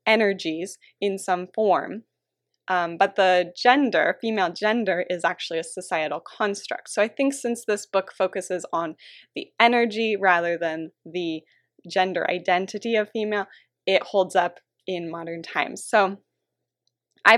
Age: 20-39